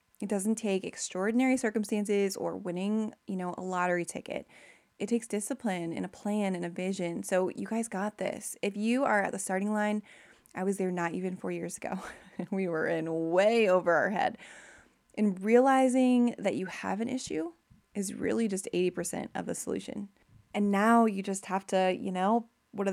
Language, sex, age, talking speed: English, female, 20-39, 190 wpm